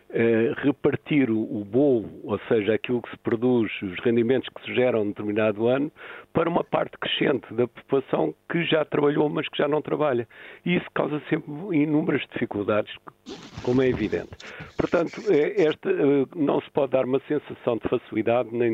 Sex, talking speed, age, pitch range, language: male, 160 wpm, 50-69, 115-140 Hz, Portuguese